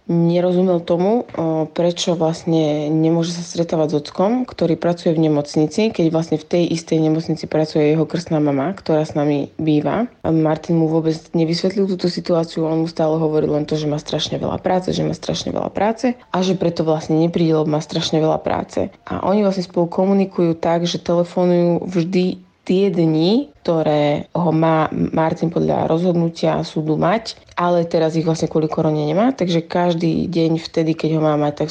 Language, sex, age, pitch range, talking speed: Slovak, female, 20-39, 155-175 Hz, 175 wpm